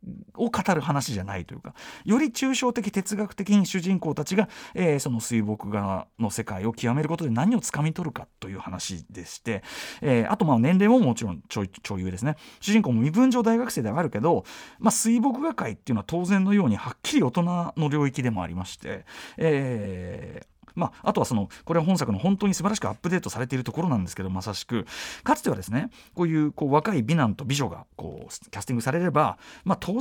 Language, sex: Japanese, male